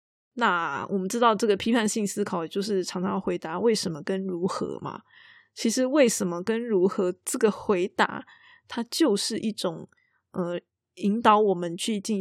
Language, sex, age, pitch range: Chinese, female, 20-39, 185-230 Hz